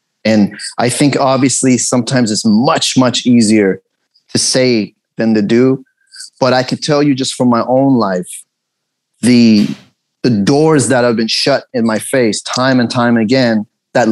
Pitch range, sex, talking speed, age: 115-135 Hz, male, 165 wpm, 30-49